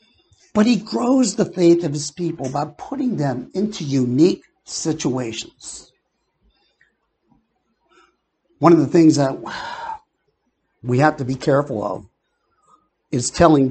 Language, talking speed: English, 120 wpm